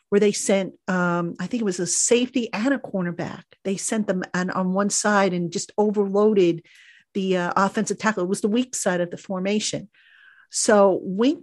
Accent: American